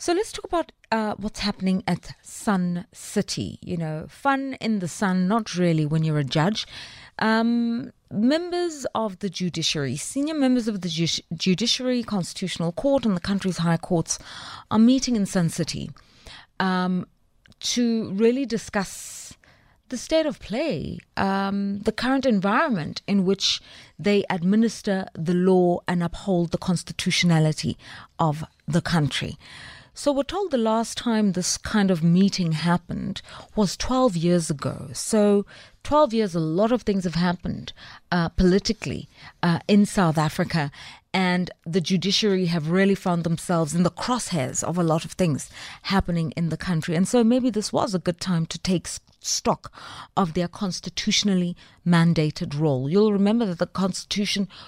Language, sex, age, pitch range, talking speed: English, female, 30-49, 170-215 Hz, 155 wpm